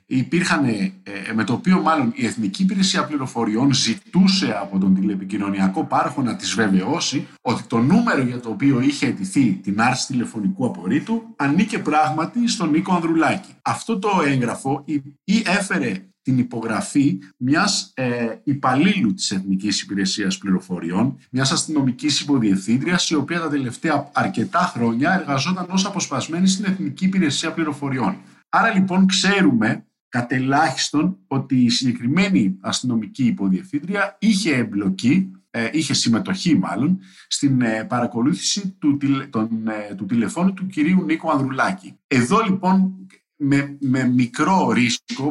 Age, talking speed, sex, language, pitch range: 50-69, 125 wpm, male, Greek, 120-190 Hz